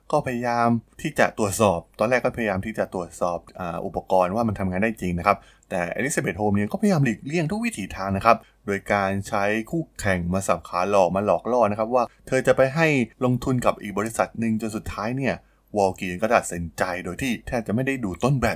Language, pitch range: Thai, 95-120 Hz